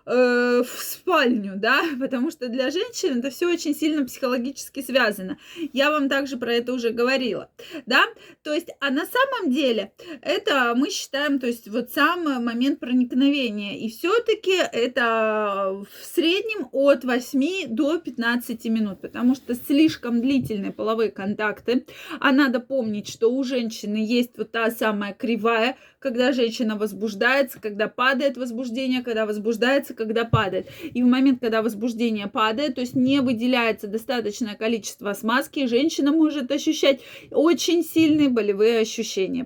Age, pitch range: 20-39, 230-290 Hz